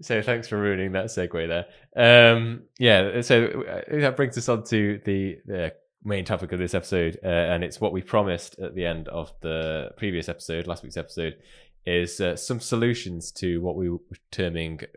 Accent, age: British, 20-39